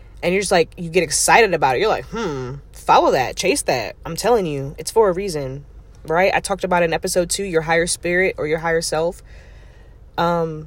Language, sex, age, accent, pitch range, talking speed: English, female, 20-39, American, 155-220 Hz, 215 wpm